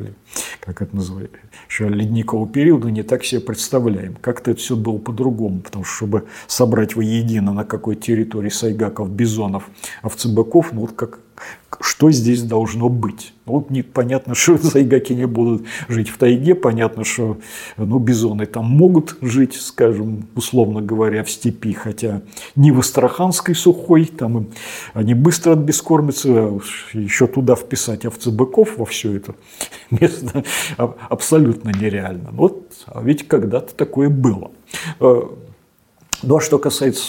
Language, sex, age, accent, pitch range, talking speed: Russian, male, 40-59, native, 110-130 Hz, 135 wpm